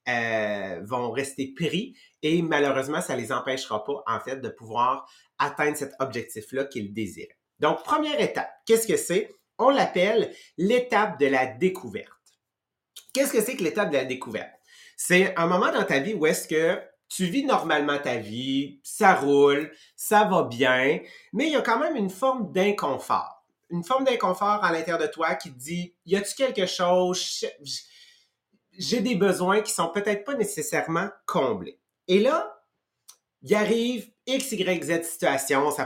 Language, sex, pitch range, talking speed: English, male, 140-220 Hz, 170 wpm